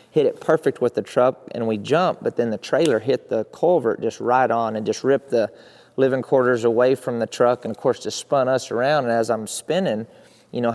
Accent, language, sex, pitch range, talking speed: American, English, male, 110-120 Hz, 235 wpm